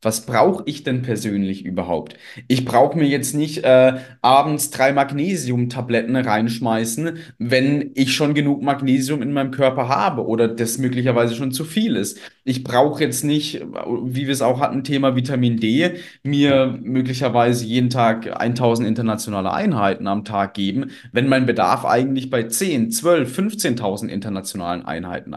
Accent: German